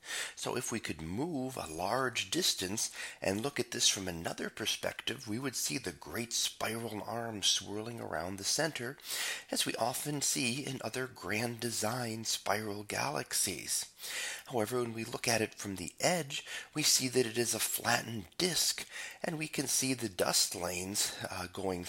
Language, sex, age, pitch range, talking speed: English, male, 30-49, 100-130 Hz, 170 wpm